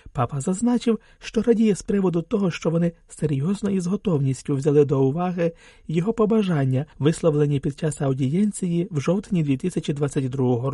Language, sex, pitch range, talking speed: Ukrainian, male, 145-195 Hz, 140 wpm